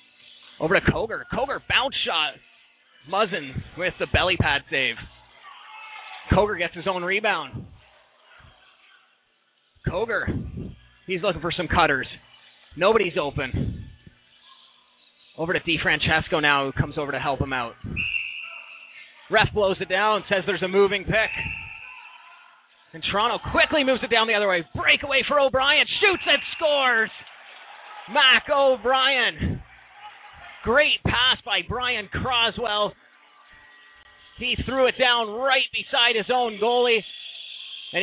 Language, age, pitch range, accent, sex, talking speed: English, 30-49, 195-255 Hz, American, male, 120 wpm